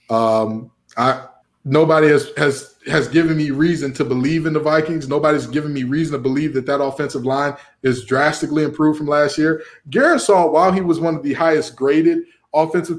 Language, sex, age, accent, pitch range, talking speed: English, male, 20-39, American, 150-205 Hz, 185 wpm